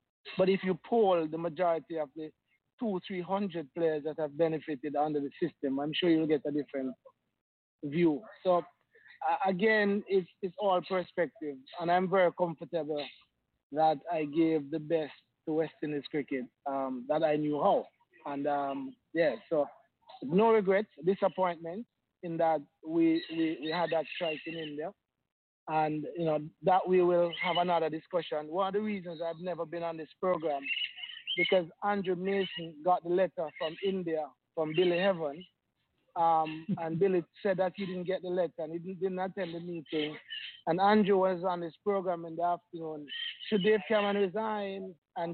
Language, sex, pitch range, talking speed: English, male, 155-190 Hz, 170 wpm